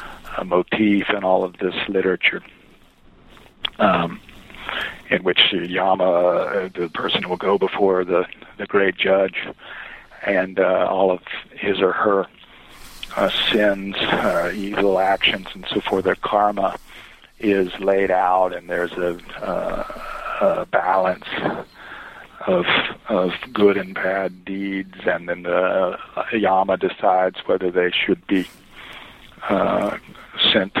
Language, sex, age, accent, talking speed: English, male, 50-69, American, 130 wpm